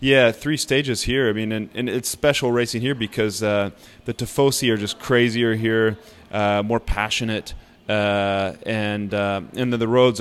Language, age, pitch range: English, 30-49, 100-120 Hz